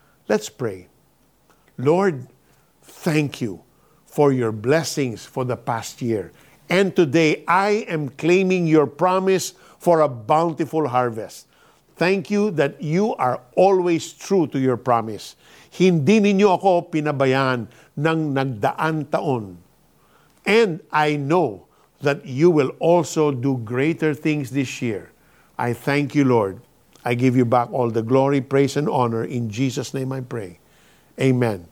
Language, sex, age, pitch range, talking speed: Filipino, male, 50-69, 125-175 Hz, 135 wpm